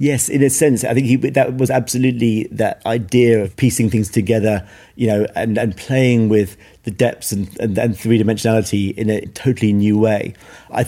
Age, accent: 40-59, British